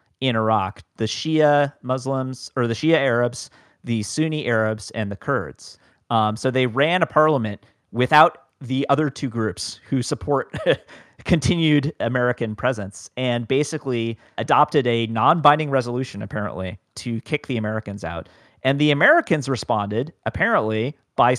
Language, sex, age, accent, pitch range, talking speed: English, male, 40-59, American, 115-150 Hz, 135 wpm